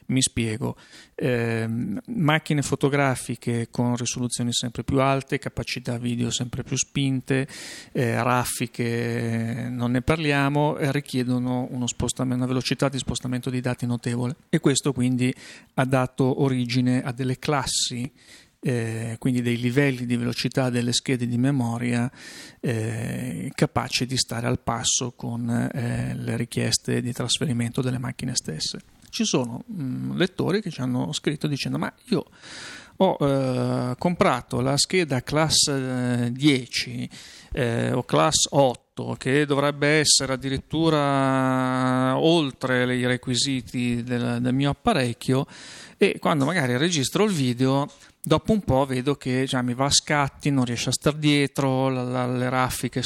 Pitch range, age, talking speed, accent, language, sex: 120-140 Hz, 40-59, 135 wpm, native, Italian, male